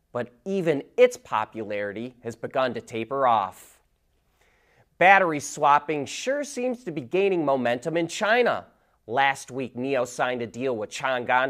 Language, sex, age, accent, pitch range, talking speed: English, male, 30-49, American, 115-190 Hz, 140 wpm